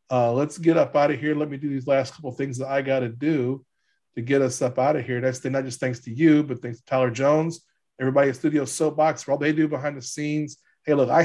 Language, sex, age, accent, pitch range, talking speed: English, male, 40-59, American, 120-150 Hz, 275 wpm